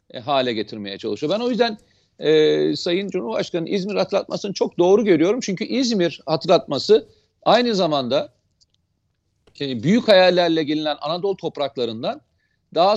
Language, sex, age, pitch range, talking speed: Turkish, male, 40-59, 135-205 Hz, 120 wpm